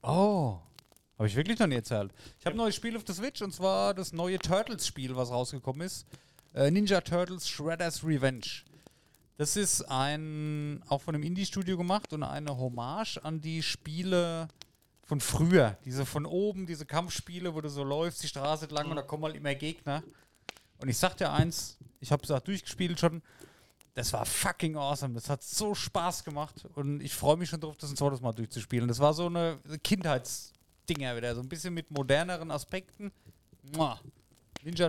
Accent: German